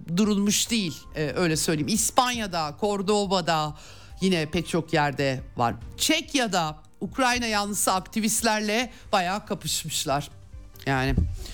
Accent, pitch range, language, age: native, 155-220 Hz, Turkish, 50-69